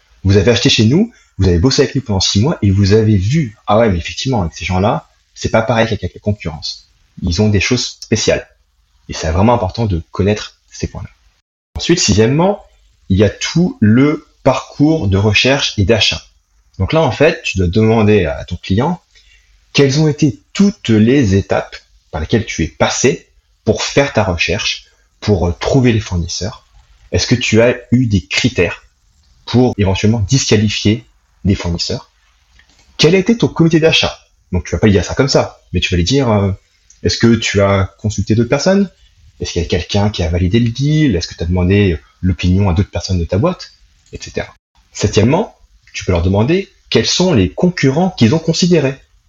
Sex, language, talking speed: male, French, 190 wpm